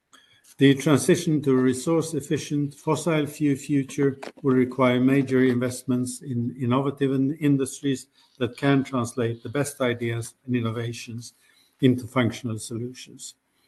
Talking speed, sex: 115 wpm, male